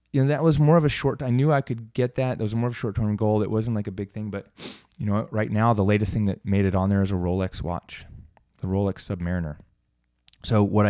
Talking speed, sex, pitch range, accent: 275 wpm, male, 95-110 Hz, American